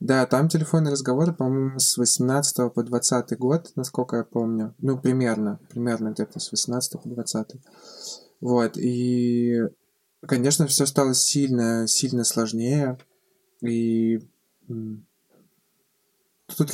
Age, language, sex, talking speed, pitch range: 20-39, Russian, male, 110 wpm, 115-140 Hz